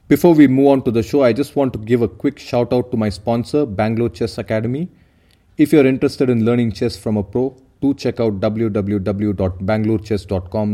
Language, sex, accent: English, male, Indian